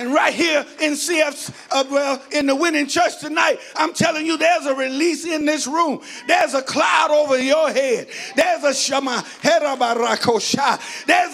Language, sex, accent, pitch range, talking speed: English, male, American, 285-350 Hz, 165 wpm